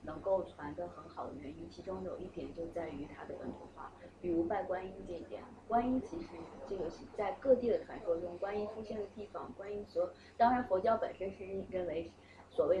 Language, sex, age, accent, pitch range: Chinese, female, 20-39, native, 180-250 Hz